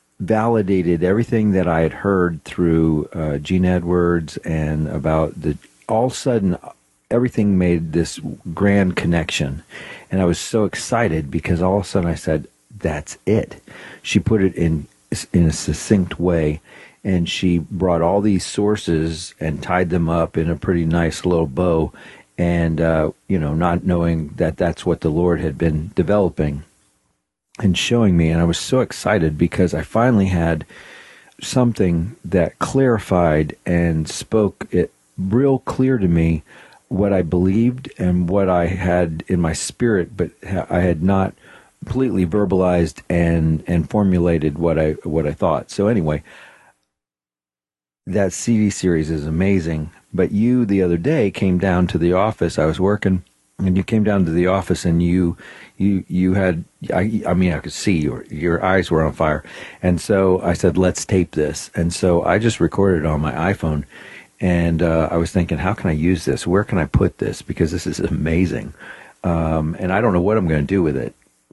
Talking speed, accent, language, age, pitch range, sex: 180 wpm, American, English, 40-59, 80-95 Hz, male